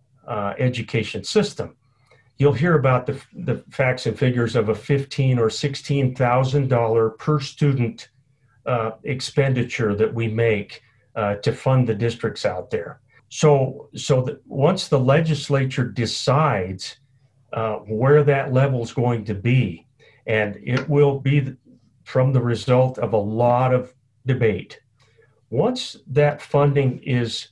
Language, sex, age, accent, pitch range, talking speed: English, male, 40-59, American, 120-145 Hz, 140 wpm